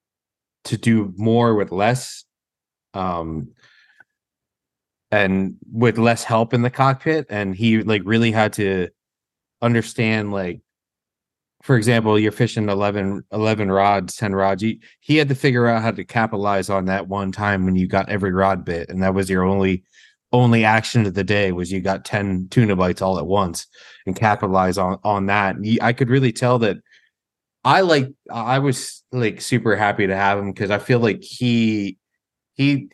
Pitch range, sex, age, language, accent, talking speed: 95-120 Hz, male, 20-39, English, American, 175 wpm